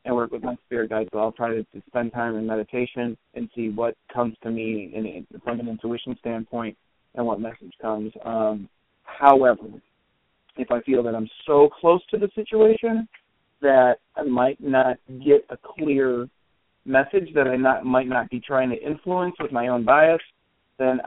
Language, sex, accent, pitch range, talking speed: English, male, American, 115-135 Hz, 175 wpm